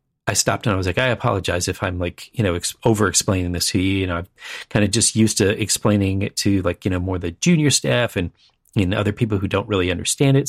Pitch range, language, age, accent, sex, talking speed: 95-125 Hz, English, 40-59, American, male, 255 wpm